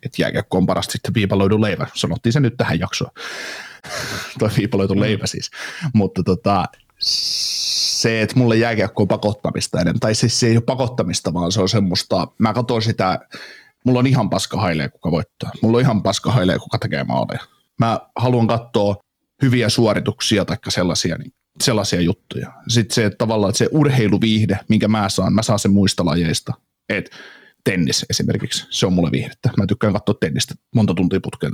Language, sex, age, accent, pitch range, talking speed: Finnish, male, 30-49, native, 100-120 Hz, 165 wpm